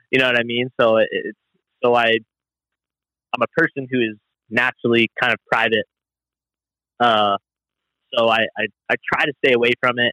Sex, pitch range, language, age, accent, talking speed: male, 105-120 Hz, English, 20-39, American, 170 wpm